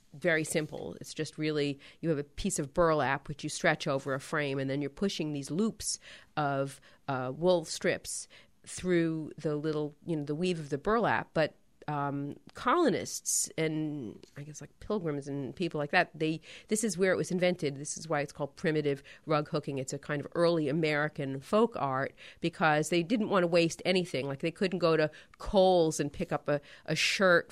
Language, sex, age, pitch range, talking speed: English, female, 40-59, 145-175 Hz, 200 wpm